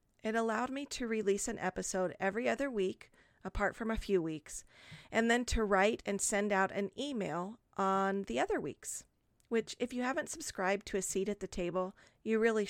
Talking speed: 195 wpm